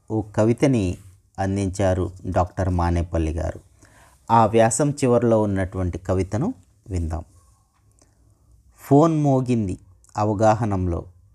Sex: male